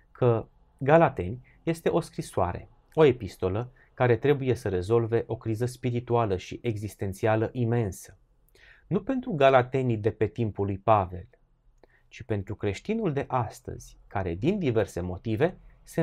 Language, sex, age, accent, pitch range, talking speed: Romanian, male, 30-49, native, 100-130 Hz, 130 wpm